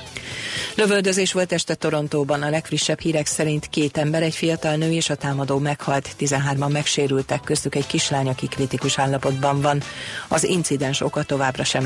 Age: 40-59